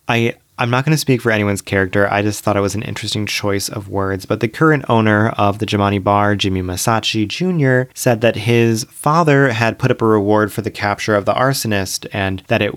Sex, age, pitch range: male, 30-49, 100-125 Hz